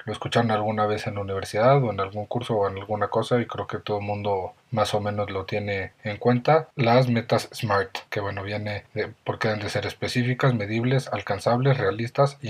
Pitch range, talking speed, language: 105-125 Hz, 210 wpm, Spanish